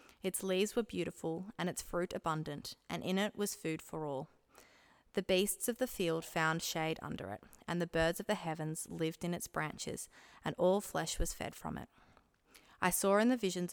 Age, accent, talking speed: 20-39, Australian, 200 wpm